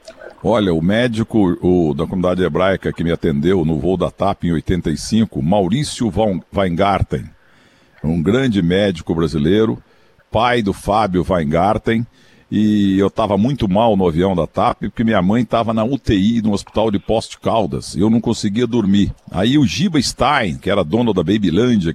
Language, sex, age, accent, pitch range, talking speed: Portuguese, male, 60-79, Brazilian, 90-115 Hz, 165 wpm